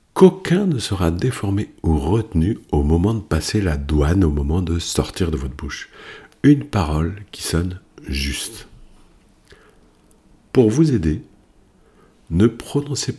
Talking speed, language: 130 wpm, French